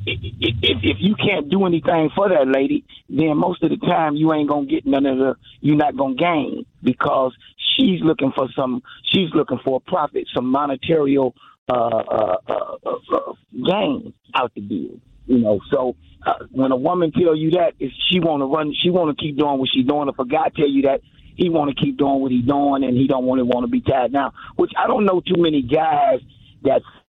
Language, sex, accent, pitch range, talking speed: English, male, American, 135-170 Hz, 230 wpm